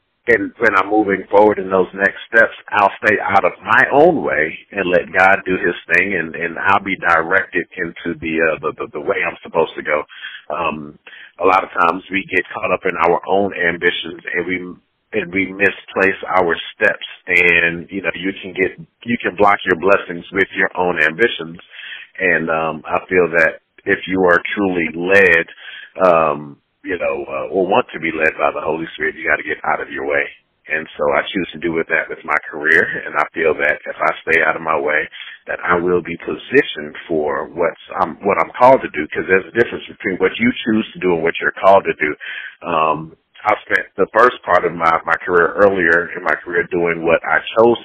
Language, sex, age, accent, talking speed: English, male, 40-59, American, 215 wpm